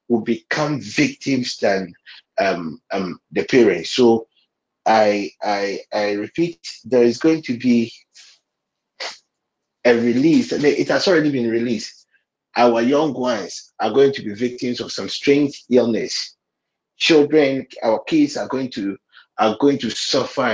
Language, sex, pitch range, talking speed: English, male, 115-135 Hz, 135 wpm